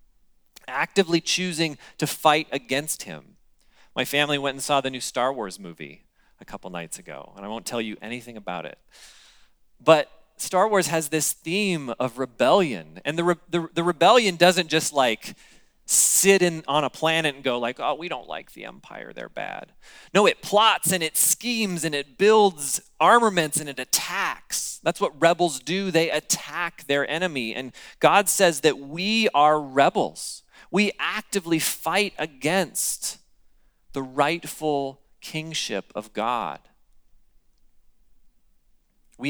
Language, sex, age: English, male, 30-49